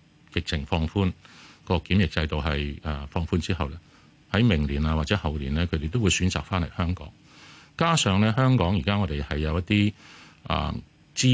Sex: male